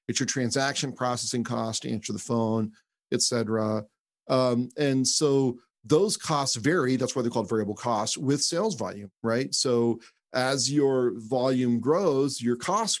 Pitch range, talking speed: 110-130 Hz, 155 wpm